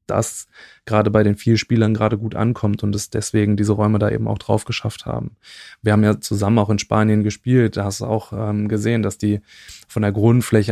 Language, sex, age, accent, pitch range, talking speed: German, male, 20-39, German, 105-110 Hz, 220 wpm